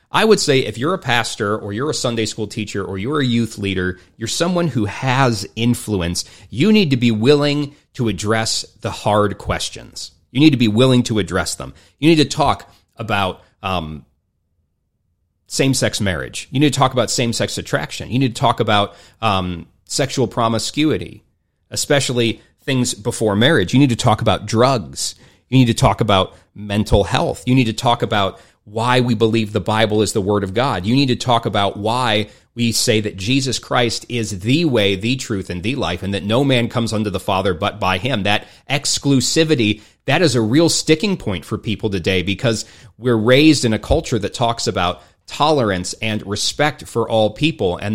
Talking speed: 190 wpm